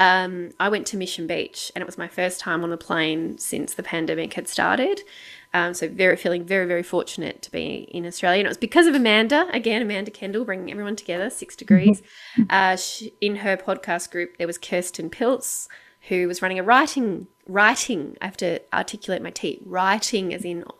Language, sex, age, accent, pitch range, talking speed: English, female, 20-39, Australian, 175-215 Hz, 200 wpm